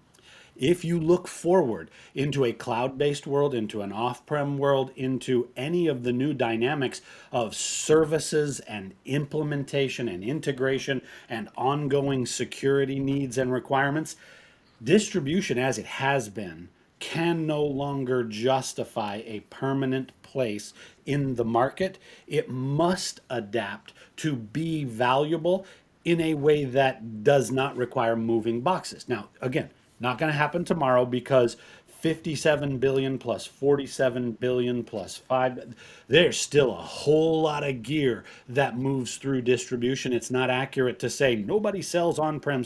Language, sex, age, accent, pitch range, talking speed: English, male, 40-59, American, 125-155 Hz, 130 wpm